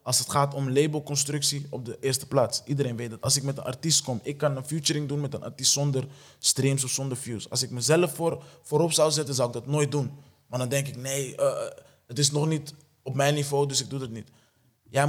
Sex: male